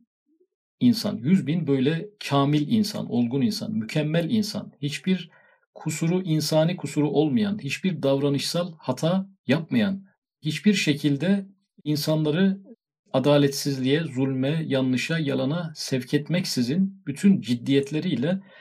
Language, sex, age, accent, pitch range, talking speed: Turkish, male, 50-69, native, 135-180 Hz, 95 wpm